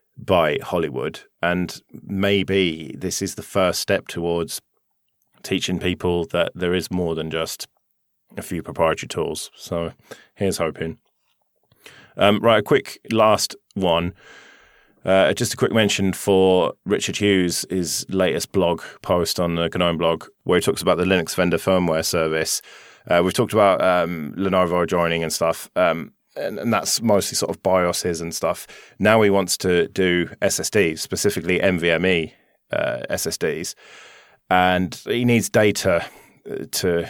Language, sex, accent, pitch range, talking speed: English, male, British, 85-95 Hz, 145 wpm